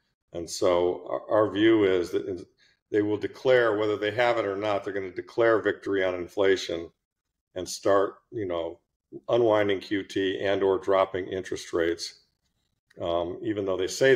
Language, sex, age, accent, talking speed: English, male, 50-69, American, 160 wpm